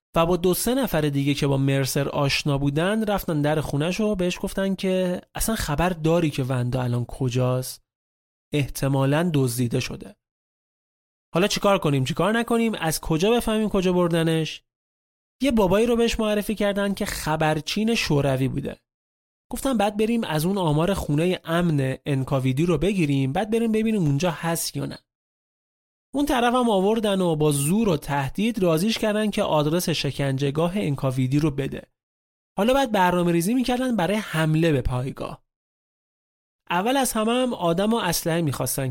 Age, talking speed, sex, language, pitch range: 30-49, 155 wpm, male, Persian, 140-205 Hz